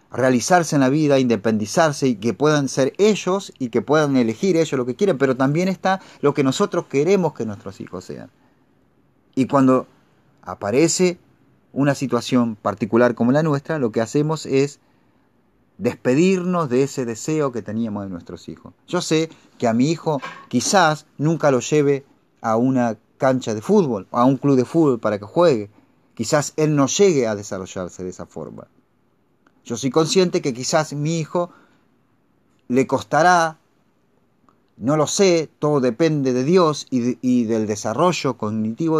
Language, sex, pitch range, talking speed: Spanish, male, 120-160 Hz, 160 wpm